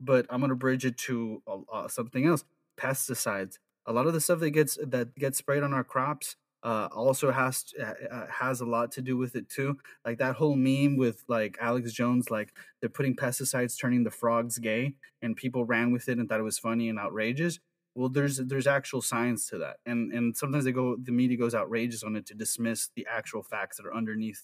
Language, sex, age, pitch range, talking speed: English, male, 20-39, 115-135 Hz, 225 wpm